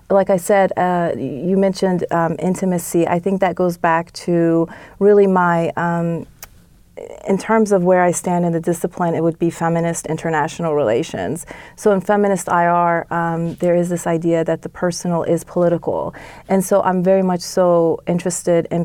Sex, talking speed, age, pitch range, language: female, 170 wpm, 30-49, 165-185 Hz, English